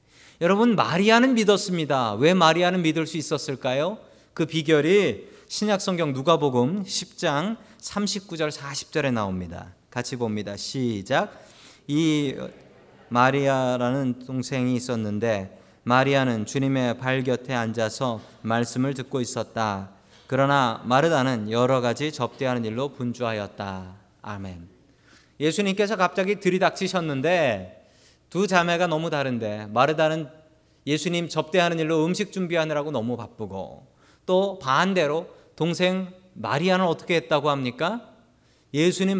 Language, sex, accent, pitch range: Korean, male, native, 125-175 Hz